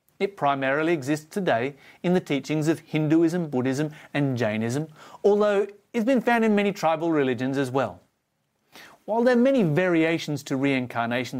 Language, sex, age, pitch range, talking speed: English, male, 30-49, 130-190 Hz, 155 wpm